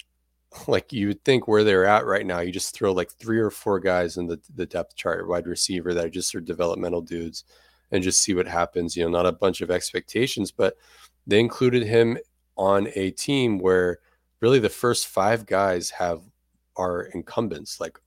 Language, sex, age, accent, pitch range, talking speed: English, male, 20-39, American, 85-100 Hz, 200 wpm